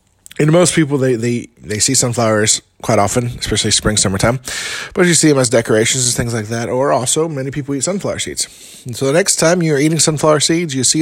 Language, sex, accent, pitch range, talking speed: English, male, American, 130-165 Hz, 225 wpm